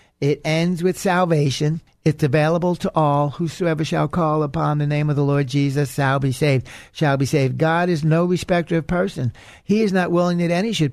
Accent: American